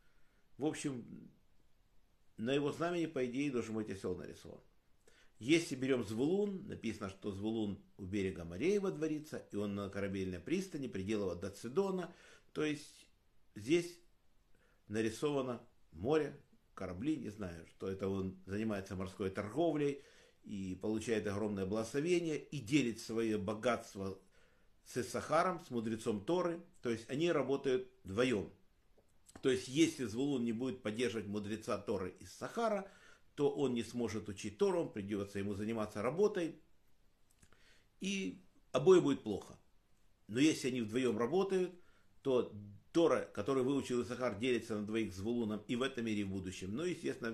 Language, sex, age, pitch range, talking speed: Russian, male, 50-69, 105-145 Hz, 140 wpm